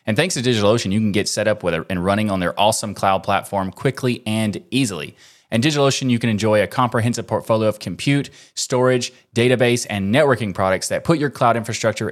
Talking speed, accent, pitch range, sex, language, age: 205 wpm, American, 100-125 Hz, male, English, 20-39